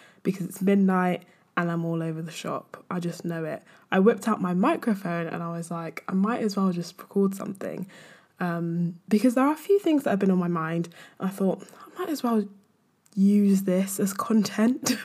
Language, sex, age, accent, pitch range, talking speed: English, female, 10-29, British, 175-215 Hz, 205 wpm